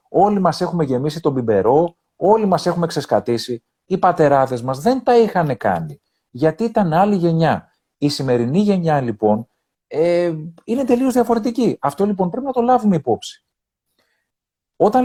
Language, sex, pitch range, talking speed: Greek, male, 130-195 Hz, 150 wpm